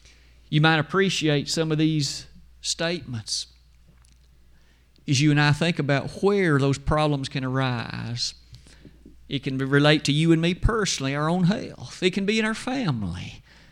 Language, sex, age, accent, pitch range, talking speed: English, male, 50-69, American, 130-180 Hz, 155 wpm